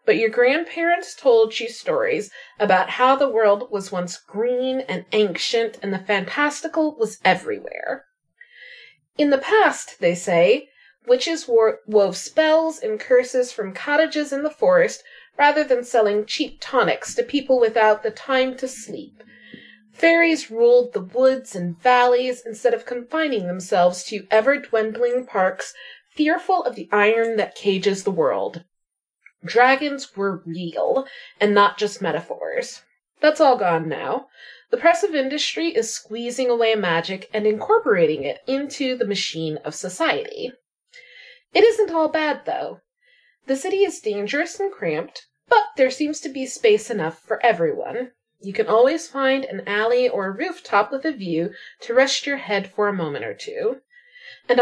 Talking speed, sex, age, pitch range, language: 150 wpm, female, 30-49, 215-330 Hz, English